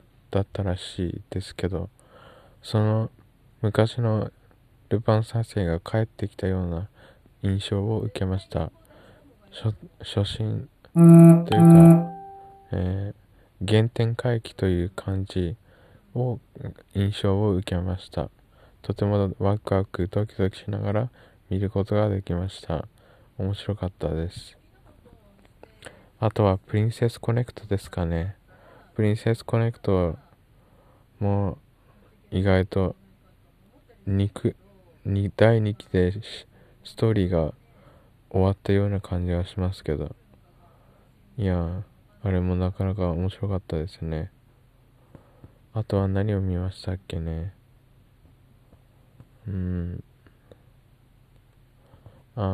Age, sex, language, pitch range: 20-39, male, Japanese, 95-120 Hz